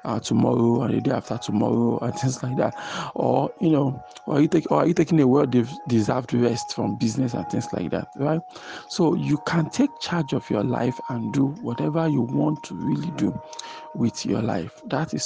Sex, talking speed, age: male, 225 wpm, 50-69